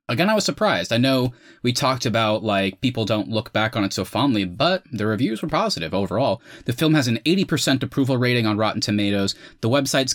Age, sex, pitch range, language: 30-49, male, 105-135 Hz, English